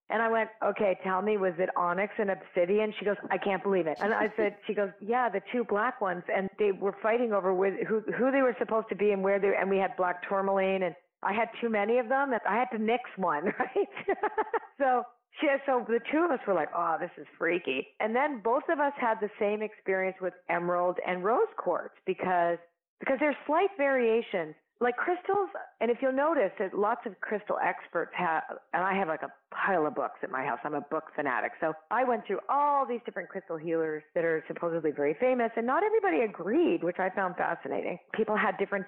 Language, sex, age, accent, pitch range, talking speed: English, female, 40-59, American, 180-245 Hz, 225 wpm